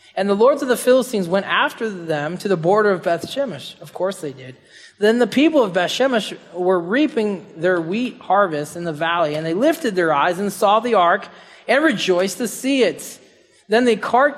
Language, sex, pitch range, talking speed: English, male, 170-225 Hz, 210 wpm